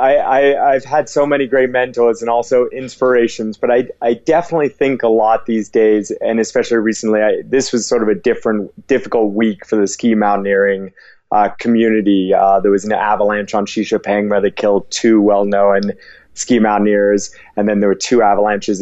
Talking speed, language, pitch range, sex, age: 190 wpm, English, 105-125 Hz, male, 30-49